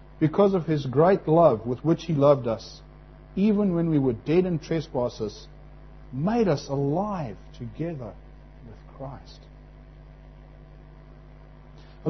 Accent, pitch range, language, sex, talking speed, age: Australian, 140-190 Hz, English, male, 120 wpm, 50-69